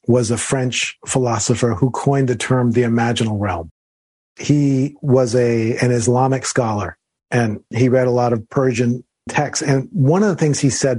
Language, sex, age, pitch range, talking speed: English, male, 40-59, 120-150 Hz, 170 wpm